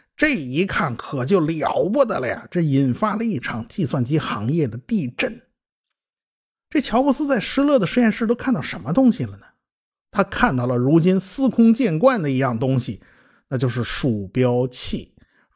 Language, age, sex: Chinese, 50-69, male